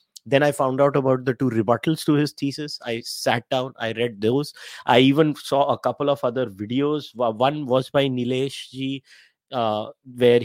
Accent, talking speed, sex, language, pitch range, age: Indian, 180 wpm, male, English, 130-175 Hz, 30-49